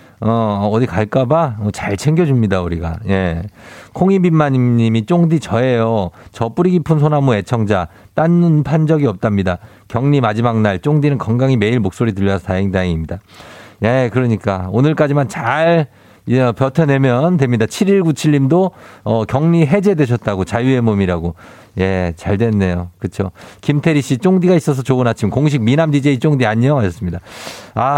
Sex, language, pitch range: male, Korean, 105-165 Hz